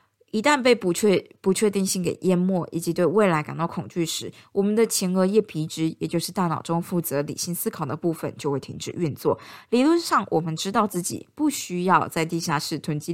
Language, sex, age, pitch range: Chinese, female, 20-39, 165-205 Hz